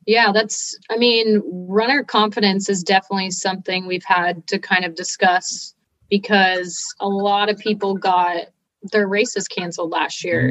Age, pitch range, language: 30-49, 180-210 Hz, English